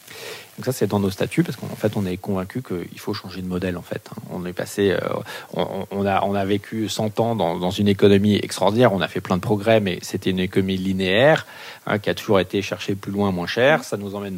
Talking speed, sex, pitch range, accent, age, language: 250 wpm, male, 95-120 Hz, French, 40-59, French